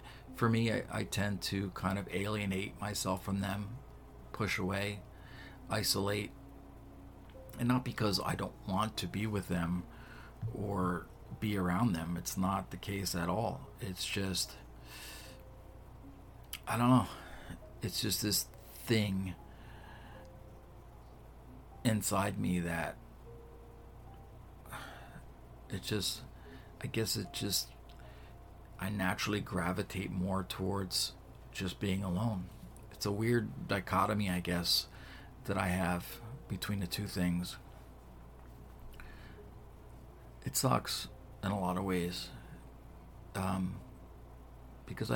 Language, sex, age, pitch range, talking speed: English, male, 50-69, 85-105 Hz, 110 wpm